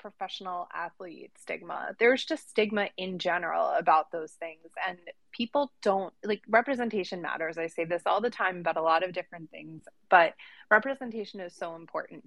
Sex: female